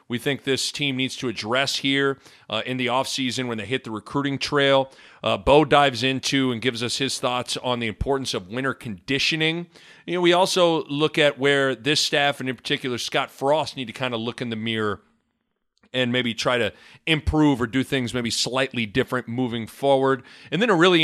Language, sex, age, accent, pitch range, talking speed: English, male, 40-59, American, 115-145 Hz, 205 wpm